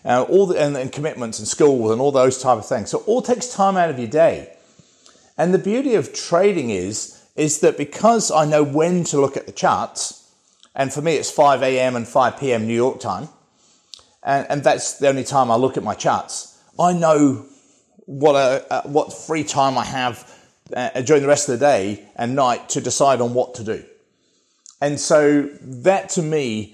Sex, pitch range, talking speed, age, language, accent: male, 125-155 Hz, 210 wpm, 40-59, English, British